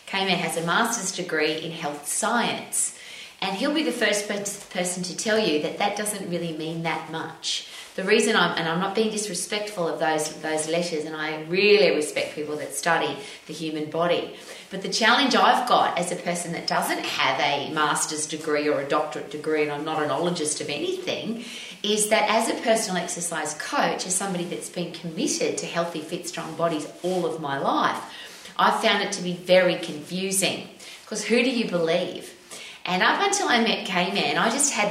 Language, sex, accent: English, female, Australian